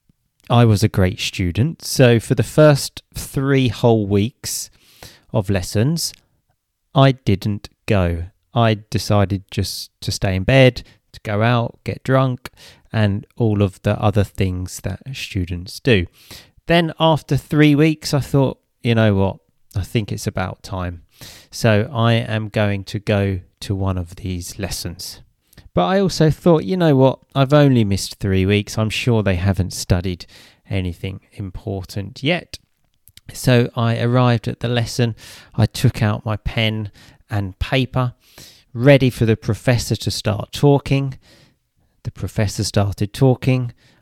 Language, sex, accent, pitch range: English, male, British, 100-125 Hz